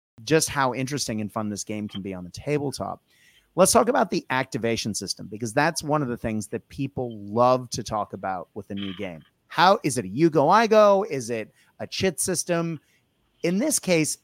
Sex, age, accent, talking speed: male, 30-49, American, 210 wpm